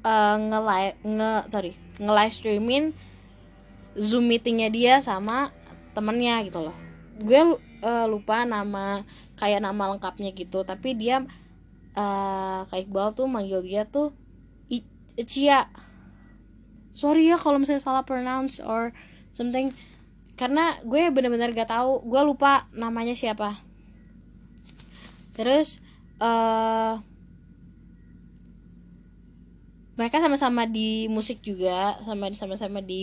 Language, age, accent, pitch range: Indonesian, 20-39, native, 195-255 Hz